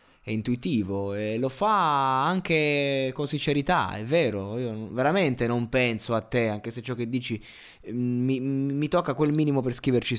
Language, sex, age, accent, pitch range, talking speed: Italian, male, 20-39, native, 110-140 Hz, 165 wpm